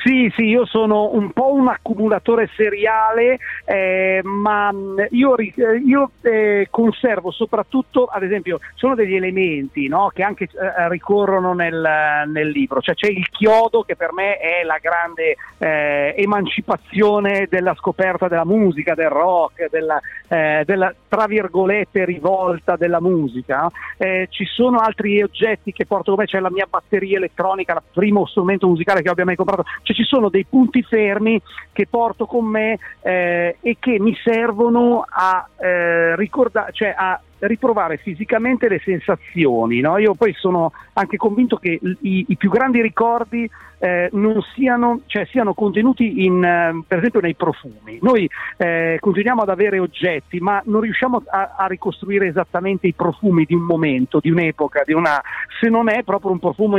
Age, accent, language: 40-59, native, Italian